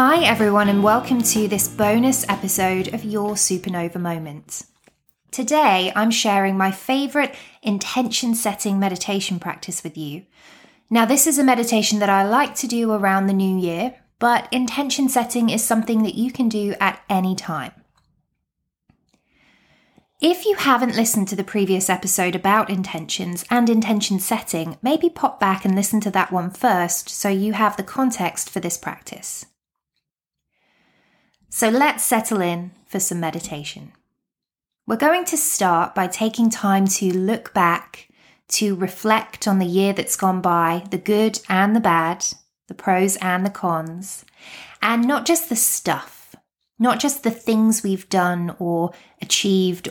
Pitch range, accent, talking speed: 185-230 Hz, British, 155 wpm